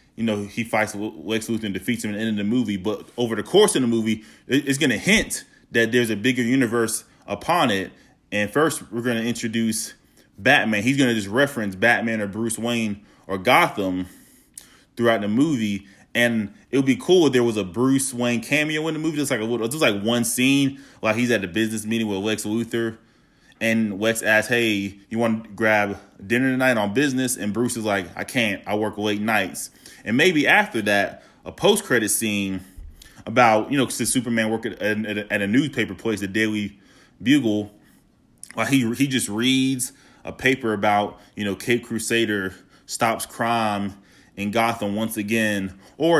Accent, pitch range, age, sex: American, 105-120 Hz, 20-39, male